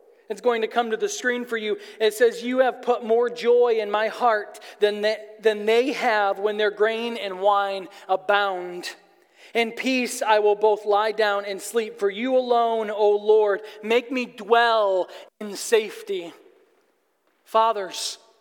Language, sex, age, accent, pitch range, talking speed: English, male, 40-59, American, 220-270 Hz, 165 wpm